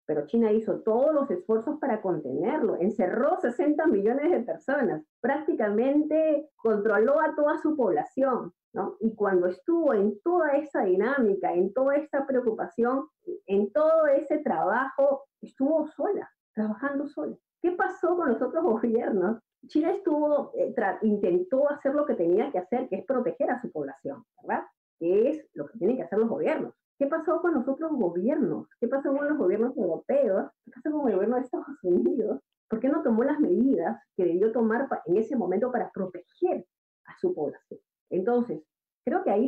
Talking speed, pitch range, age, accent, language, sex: 170 wpm, 225-310 Hz, 50-69, American, Spanish, female